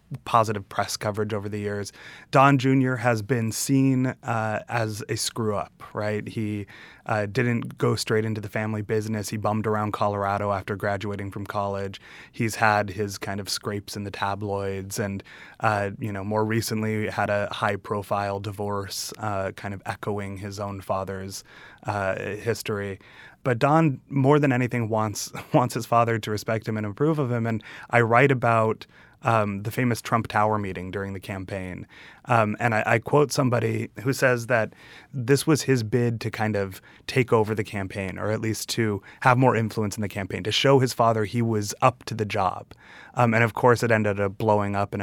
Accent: American